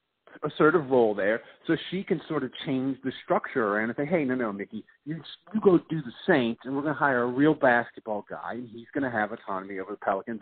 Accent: American